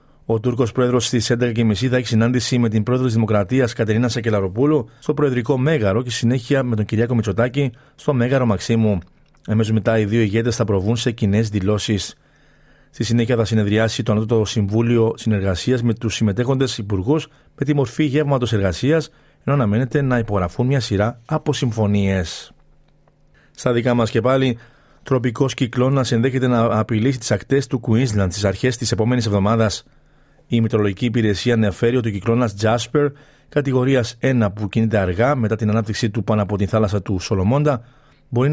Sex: male